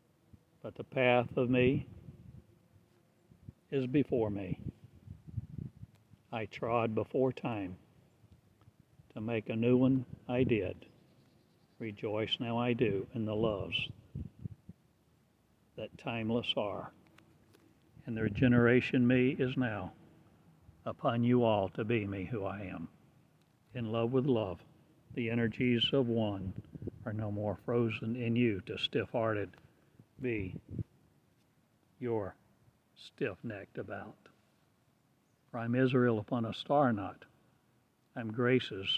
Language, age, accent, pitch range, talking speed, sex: English, 60-79, American, 110-125 Hz, 115 wpm, male